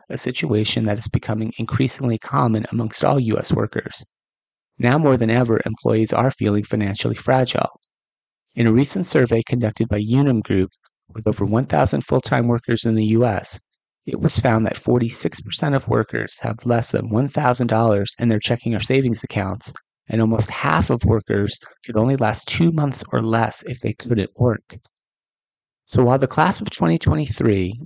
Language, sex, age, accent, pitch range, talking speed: English, male, 30-49, American, 110-125 Hz, 160 wpm